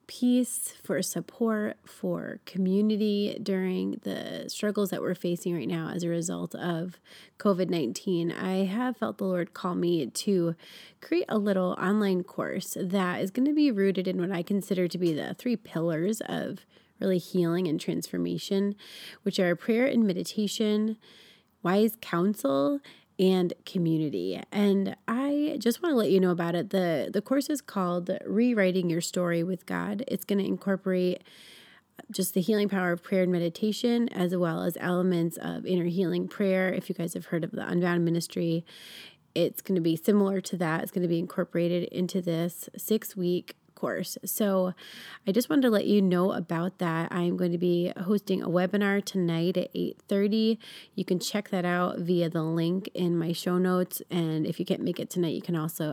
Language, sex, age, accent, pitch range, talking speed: English, female, 30-49, American, 175-205 Hz, 180 wpm